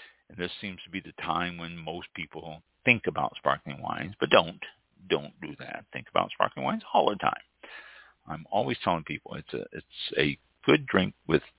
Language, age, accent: English, 50-69, American